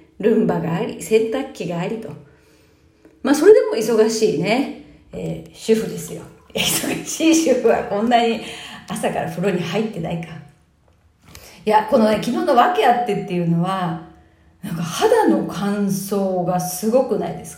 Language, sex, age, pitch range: Japanese, female, 40-59, 175-240 Hz